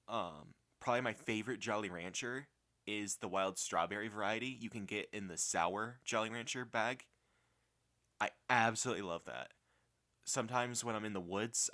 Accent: American